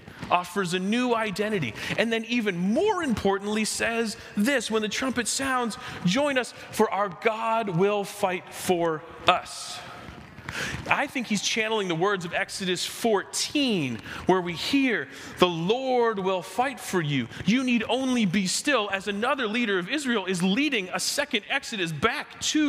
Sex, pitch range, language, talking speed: male, 175-225 Hz, English, 155 wpm